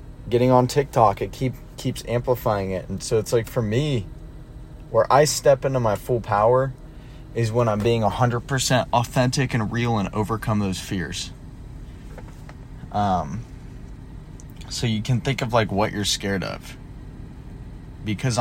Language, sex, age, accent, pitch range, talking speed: English, male, 20-39, American, 100-125 Hz, 145 wpm